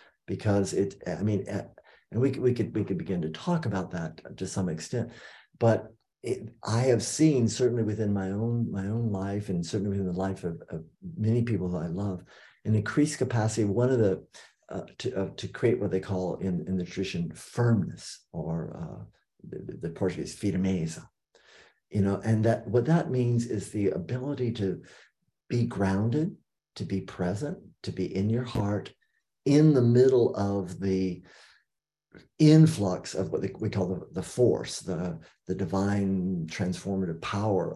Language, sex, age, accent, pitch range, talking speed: English, male, 50-69, American, 95-120 Hz, 165 wpm